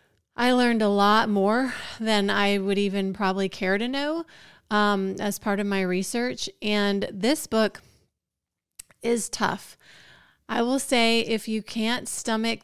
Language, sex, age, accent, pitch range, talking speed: English, female, 30-49, American, 190-220 Hz, 145 wpm